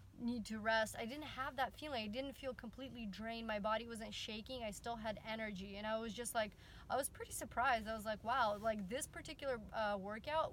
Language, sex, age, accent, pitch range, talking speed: English, female, 20-39, American, 215-250 Hz, 220 wpm